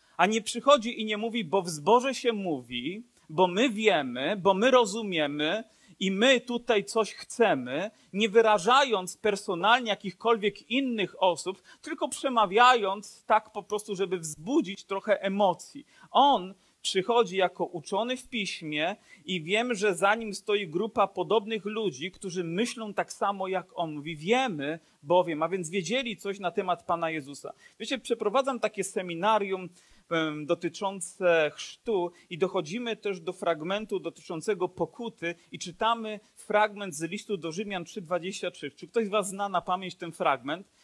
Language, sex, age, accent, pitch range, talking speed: Polish, male, 40-59, native, 180-230 Hz, 145 wpm